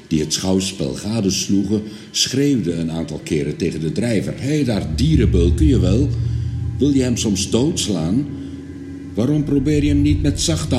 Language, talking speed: French, 160 wpm